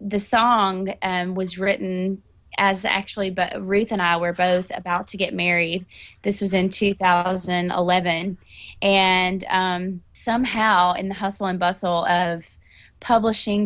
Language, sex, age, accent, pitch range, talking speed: English, female, 20-39, American, 180-205 Hz, 135 wpm